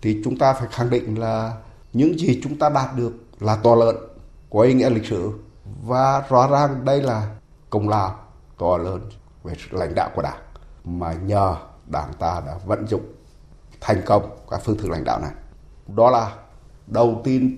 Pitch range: 105-150 Hz